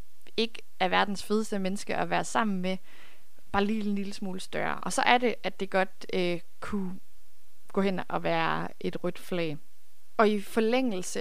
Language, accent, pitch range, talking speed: Danish, native, 185-220 Hz, 180 wpm